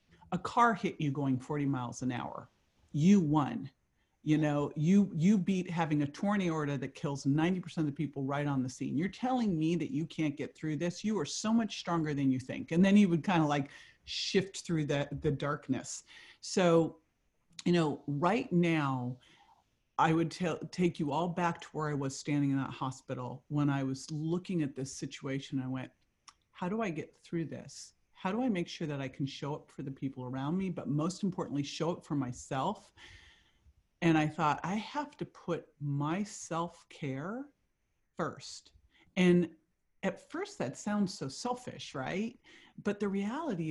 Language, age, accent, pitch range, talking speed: English, 50-69, American, 145-195 Hz, 185 wpm